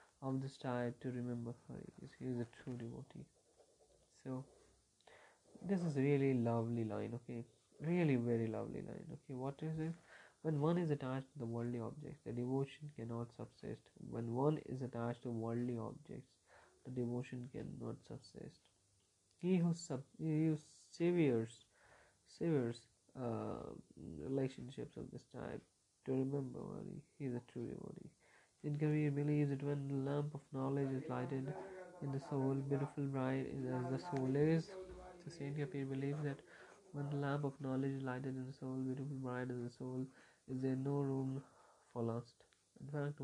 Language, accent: Hindi, native